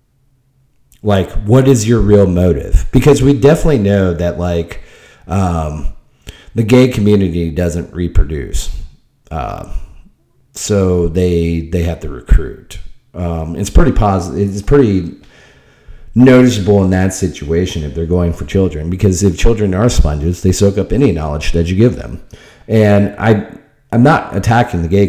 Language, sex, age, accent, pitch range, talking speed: English, male, 40-59, American, 85-115 Hz, 150 wpm